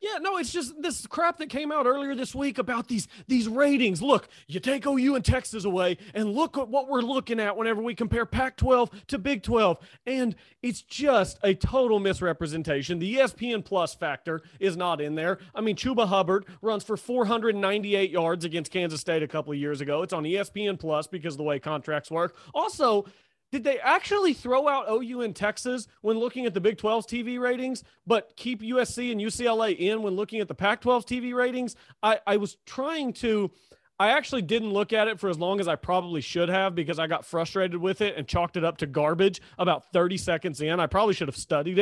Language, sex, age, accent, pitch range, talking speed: English, male, 30-49, American, 180-250 Hz, 210 wpm